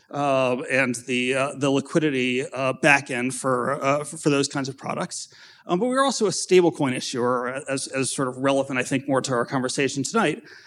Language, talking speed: English, 195 wpm